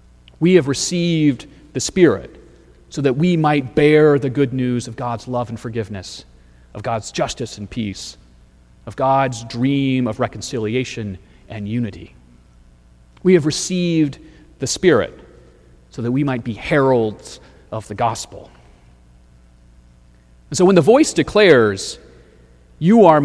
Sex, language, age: male, English, 30-49